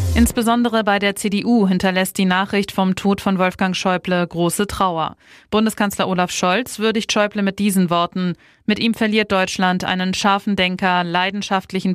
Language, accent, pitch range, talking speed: German, German, 180-205 Hz, 150 wpm